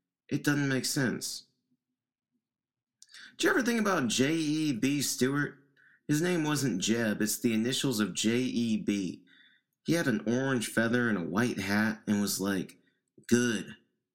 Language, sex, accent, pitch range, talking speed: English, male, American, 105-140 Hz, 140 wpm